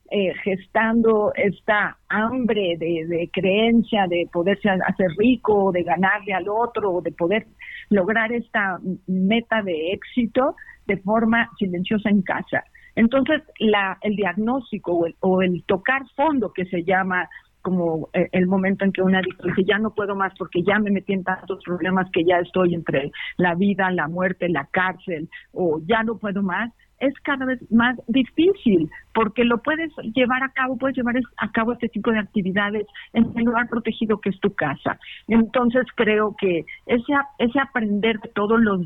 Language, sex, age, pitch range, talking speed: Spanish, female, 50-69, 190-235 Hz, 165 wpm